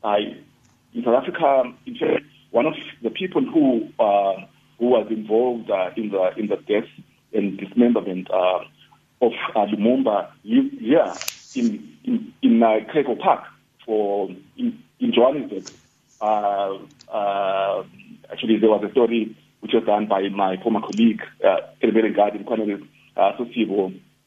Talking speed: 150 wpm